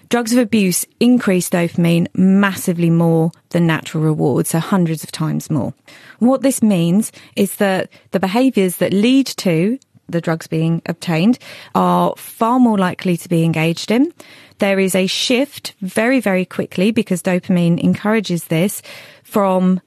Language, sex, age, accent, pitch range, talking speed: English, female, 30-49, British, 175-215 Hz, 150 wpm